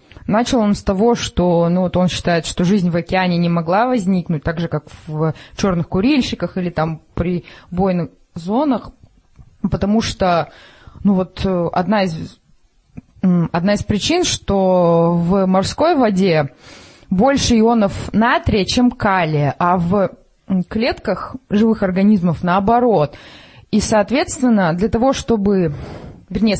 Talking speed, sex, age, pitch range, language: 120 wpm, female, 20-39, 170-225 Hz, Russian